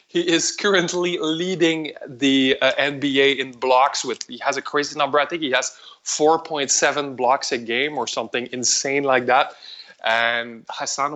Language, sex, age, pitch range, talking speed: English, male, 20-39, 135-165 Hz, 160 wpm